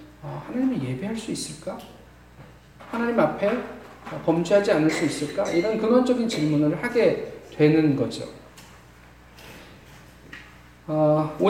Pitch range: 150-235 Hz